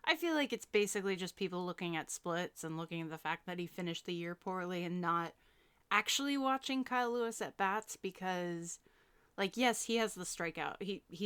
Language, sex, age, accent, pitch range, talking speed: English, female, 20-39, American, 170-220 Hz, 195 wpm